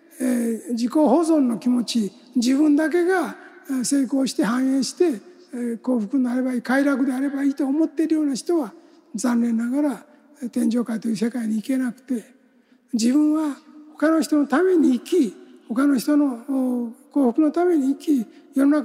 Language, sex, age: Japanese, male, 60-79